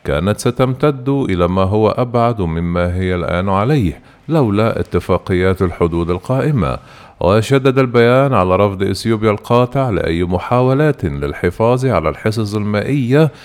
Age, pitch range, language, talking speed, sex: 50-69, 95-125 Hz, Arabic, 115 wpm, male